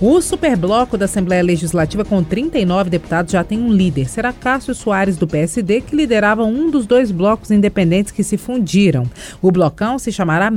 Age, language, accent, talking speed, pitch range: 40-59, Portuguese, Brazilian, 180 wpm, 170-220 Hz